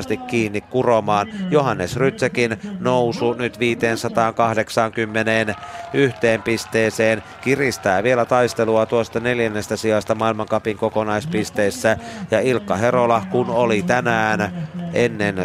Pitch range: 105-120 Hz